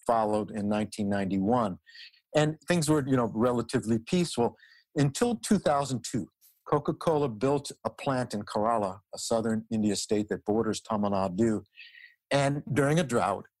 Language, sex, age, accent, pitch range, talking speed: English, male, 60-79, American, 110-140 Hz, 130 wpm